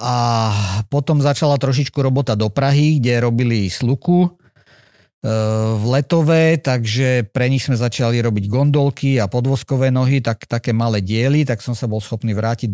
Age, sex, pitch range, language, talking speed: 50-69, male, 115-145 Hz, Slovak, 155 wpm